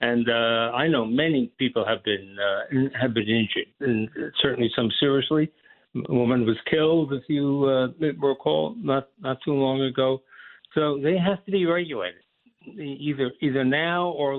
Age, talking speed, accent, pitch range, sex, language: 60-79, 165 wpm, American, 120-155 Hz, male, English